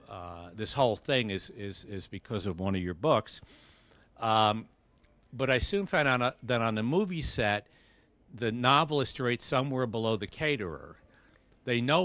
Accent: American